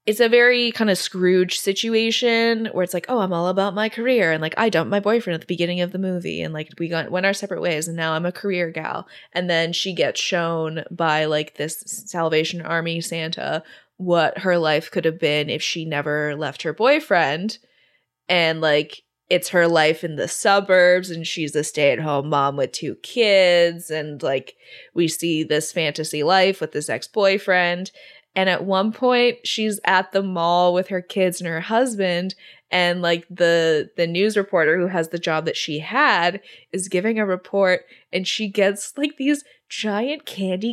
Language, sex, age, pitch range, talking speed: English, female, 20-39, 170-225 Hz, 190 wpm